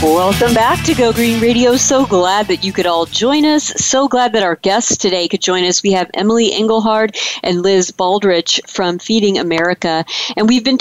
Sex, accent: female, American